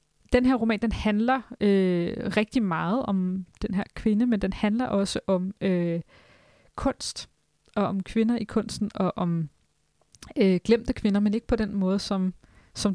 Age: 20-39